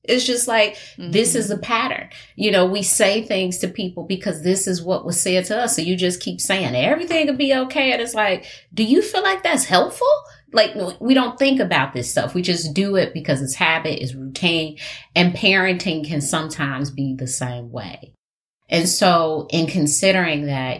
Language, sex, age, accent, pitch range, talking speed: English, female, 30-49, American, 145-195 Hz, 200 wpm